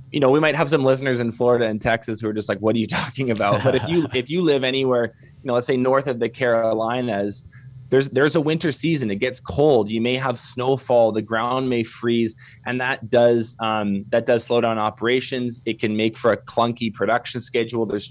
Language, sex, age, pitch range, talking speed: English, male, 20-39, 115-130 Hz, 230 wpm